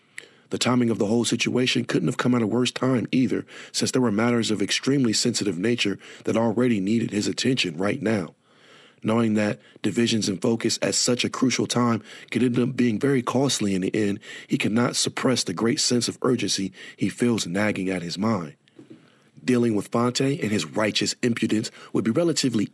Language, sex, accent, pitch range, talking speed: English, male, American, 100-125 Hz, 190 wpm